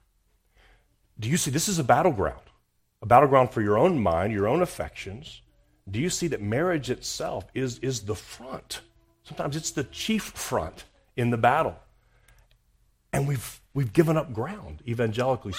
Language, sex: English, male